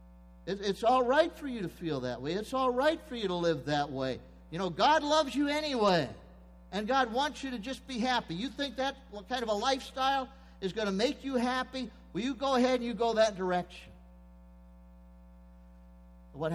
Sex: male